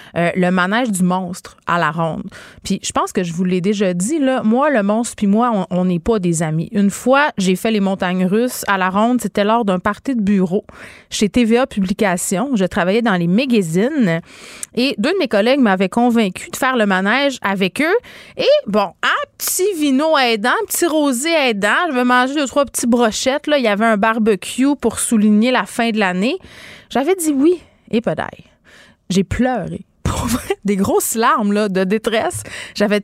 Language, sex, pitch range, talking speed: French, female, 190-245 Hz, 200 wpm